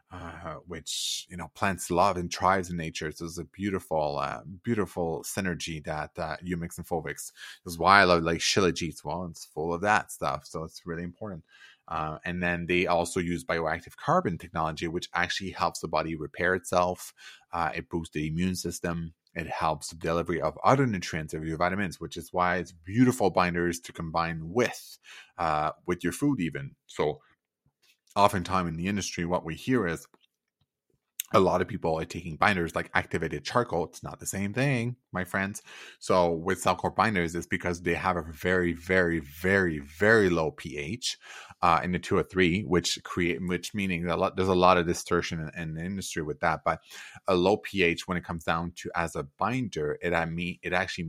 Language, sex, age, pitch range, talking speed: English, male, 30-49, 85-95 Hz, 195 wpm